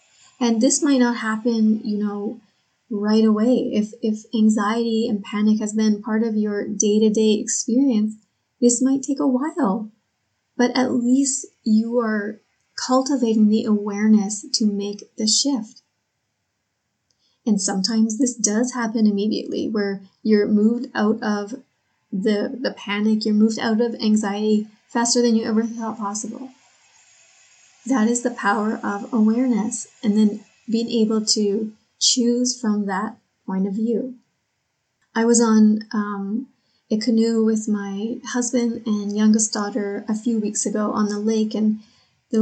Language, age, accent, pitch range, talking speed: English, 30-49, American, 210-240 Hz, 145 wpm